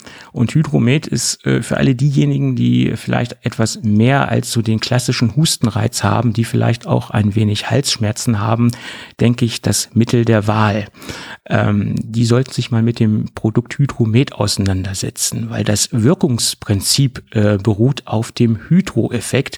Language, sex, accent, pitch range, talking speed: German, male, German, 110-125 Hz, 145 wpm